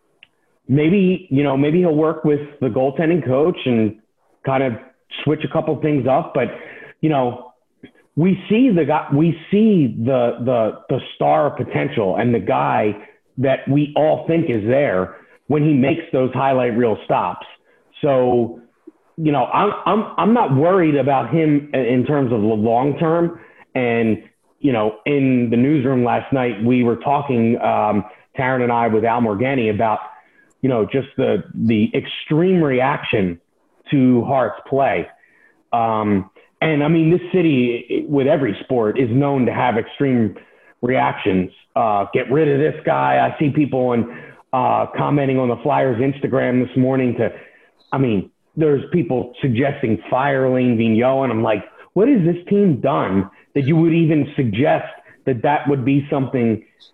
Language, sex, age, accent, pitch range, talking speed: English, male, 40-59, American, 120-150 Hz, 160 wpm